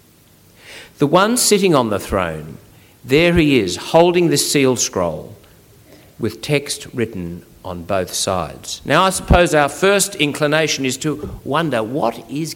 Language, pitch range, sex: English, 125-160 Hz, male